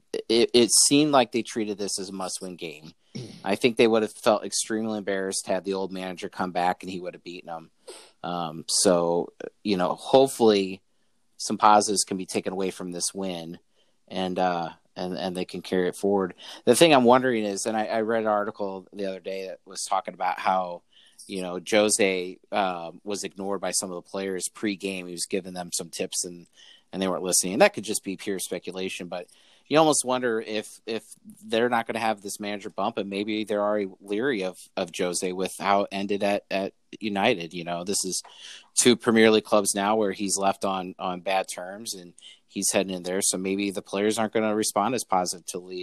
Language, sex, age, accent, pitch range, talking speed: English, male, 30-49, American, 90-110 Hz, 215 wpm